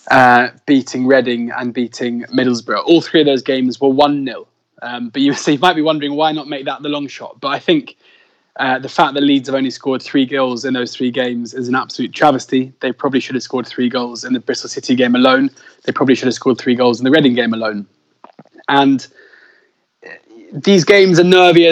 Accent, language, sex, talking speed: British, English, male, 215 wpm